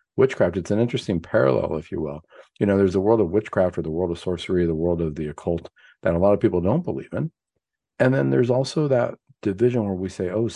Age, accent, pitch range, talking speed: 50-69, American, 85-115 Hz, 245 wpm